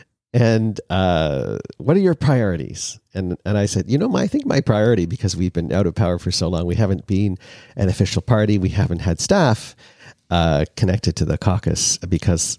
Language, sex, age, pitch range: English, male, 50-69, 90-120 Hz